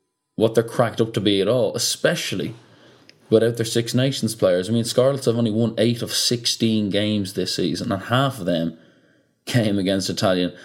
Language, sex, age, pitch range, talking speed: English, male, 20-39, 90-120 Hz, 185 wpm